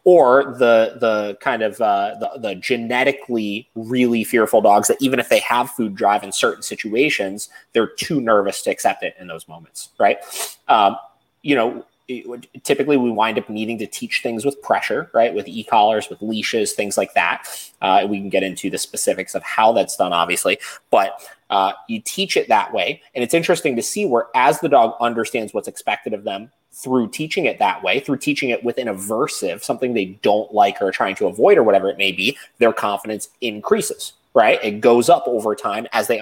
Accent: American